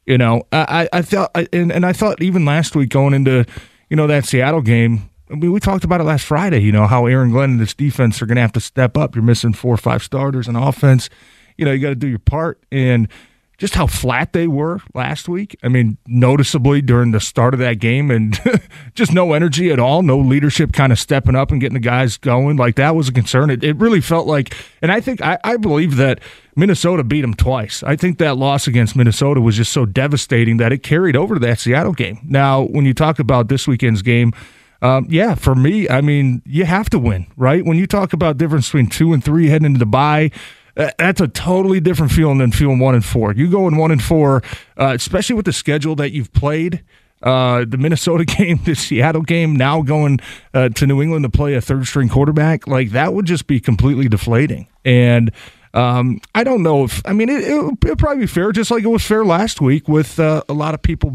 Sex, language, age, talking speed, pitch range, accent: male, English, 30-49, 235 wpm, 125-160 Hz, American